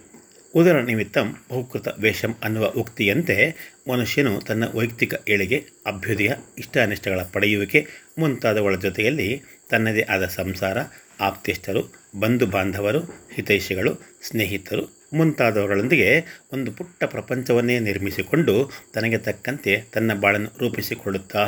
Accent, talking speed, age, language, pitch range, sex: native, 90 wpm, 30-49, Kannada, 105-125 Hz, male